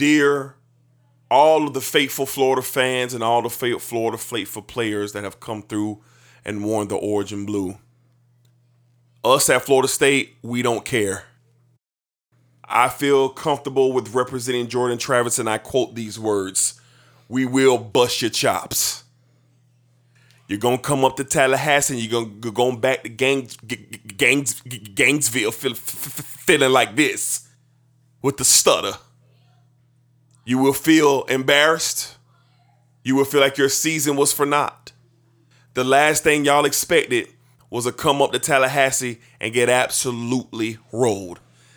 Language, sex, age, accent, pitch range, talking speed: English, male, 30-49, American, 120-135 Hz, 145 wpm